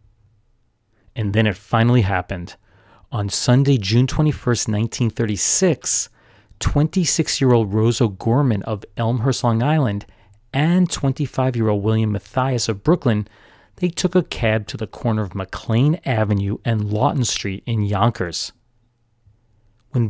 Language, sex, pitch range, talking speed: English, male, 105-125 Hz, 115 wpm